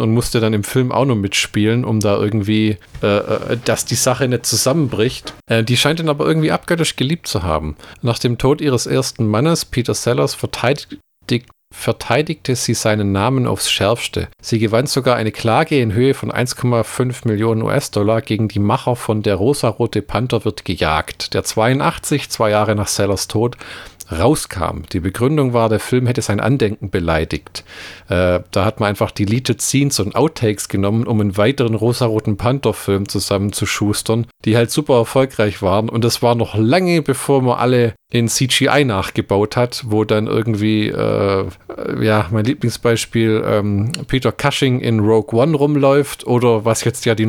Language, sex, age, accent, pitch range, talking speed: German, male, 50-69, German, 105-130 Hz, 165 wpm